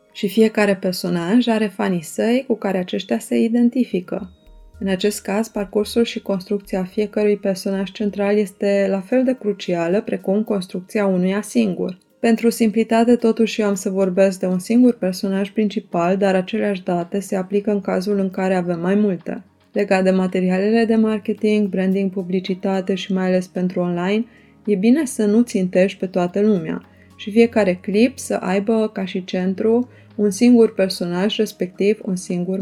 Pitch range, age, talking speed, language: 185-220 Hz, 20-39, 160 wpm, Romanian